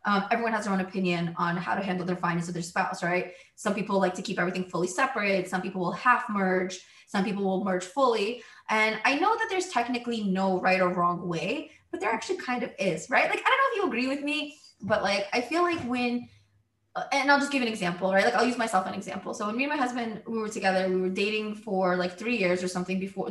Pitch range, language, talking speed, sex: 185-245 Hz, English, 255 wpm, female